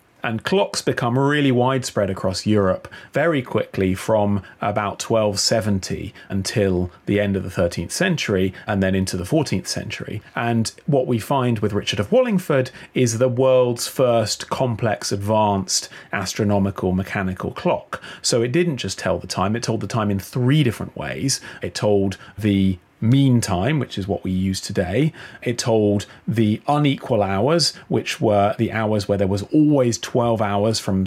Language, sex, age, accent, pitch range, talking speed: English, male, 30-49, British, 95-120 Hz, 160 wpm